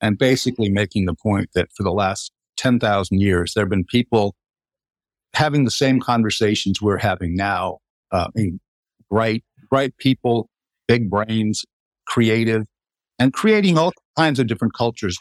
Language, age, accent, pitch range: English, 50-69, American, 105-150 Hz